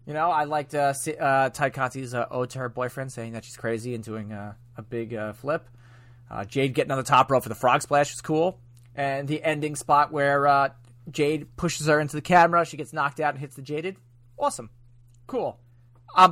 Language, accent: English, American